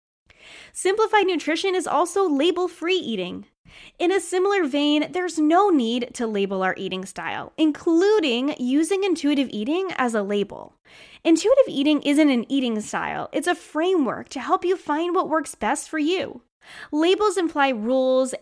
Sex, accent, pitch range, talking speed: female, American, 235-335 Hz, 150 wpm